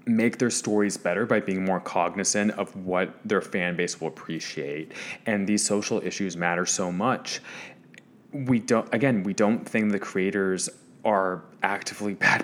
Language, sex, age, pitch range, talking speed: English, male, 20-39, 90-105 Hz, 160 wpm